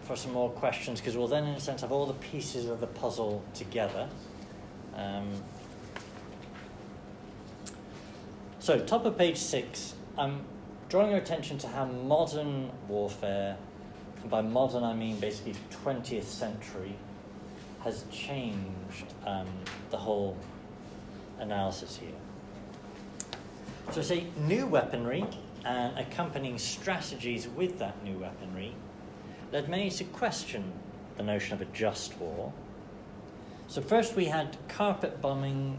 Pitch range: 105-145 Hz